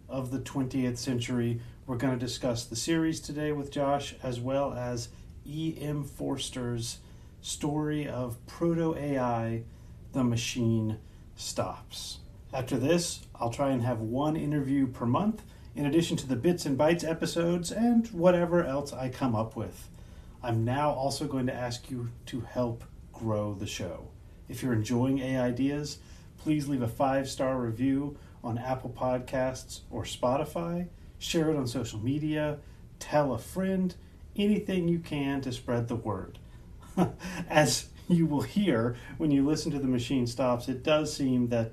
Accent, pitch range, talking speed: American, 115-145 Hz, 150 wpm